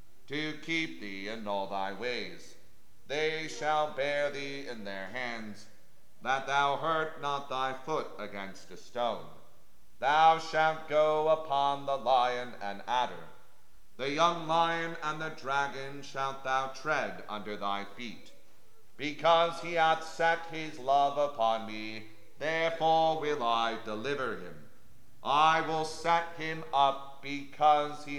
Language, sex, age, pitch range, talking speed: English, male, 40-59, 110-155 Hz, 135 wpm